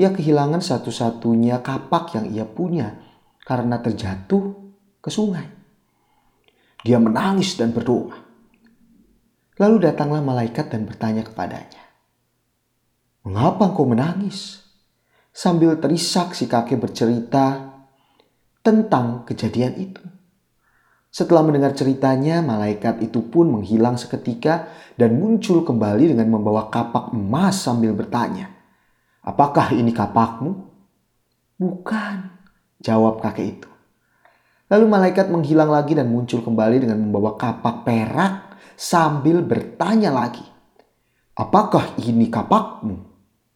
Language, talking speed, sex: Indonesian, 100 wpm, male